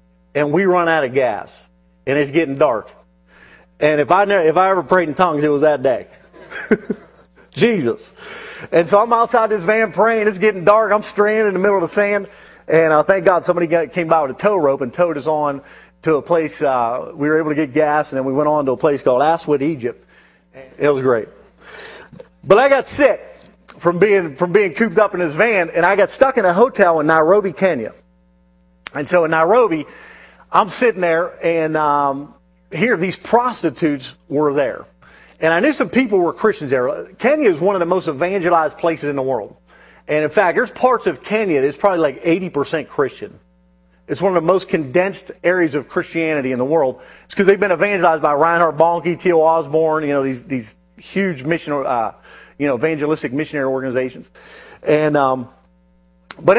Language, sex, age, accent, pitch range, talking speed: English, male, 40-59, American, 145-190 Hz, 205 wpm